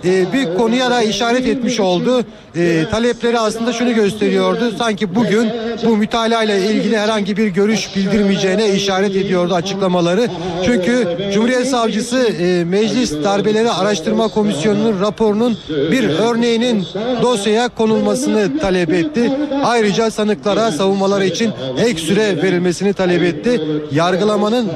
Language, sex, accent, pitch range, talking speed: Turkish, male, native, 180-220 Hz, 120 wpm